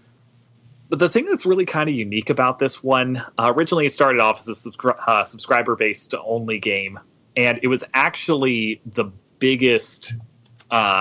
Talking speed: 160 wpm